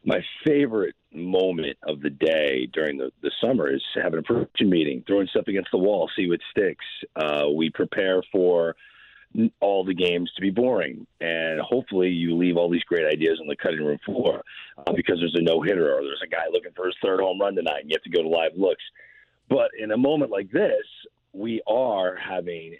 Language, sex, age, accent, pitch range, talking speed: English, male, 40-59, American, 85-115 Hz, 210 wpm